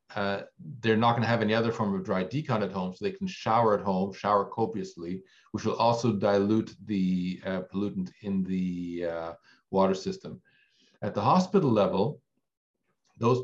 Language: English